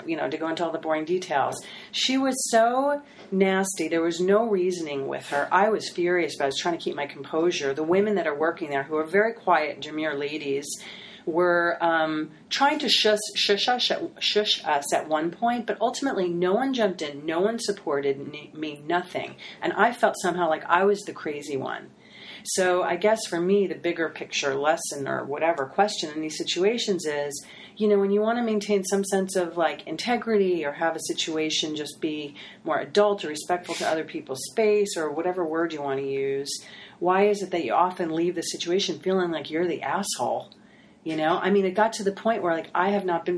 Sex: female